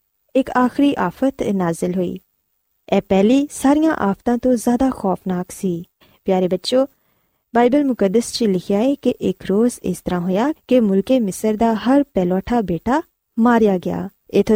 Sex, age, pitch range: female, 20-39, 185-250 Hz